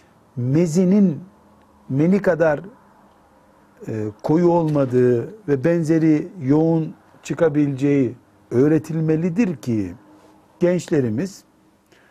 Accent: native